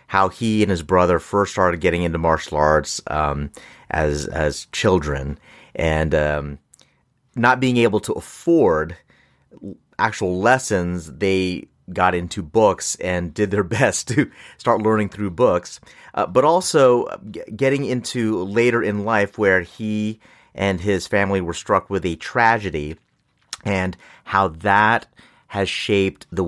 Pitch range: 85-110 Hz